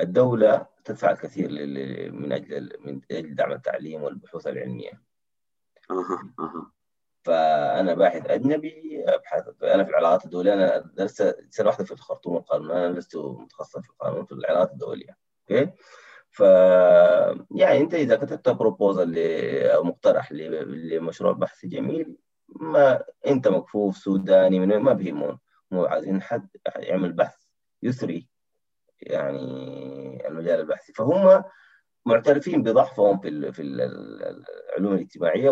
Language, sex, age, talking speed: Arabic, male, 30-49, 120 wpm